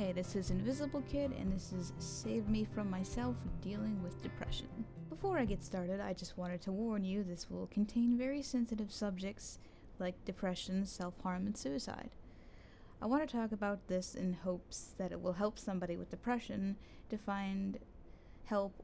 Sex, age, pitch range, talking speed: female, 10-29, 170-215 Hz, 170 wpm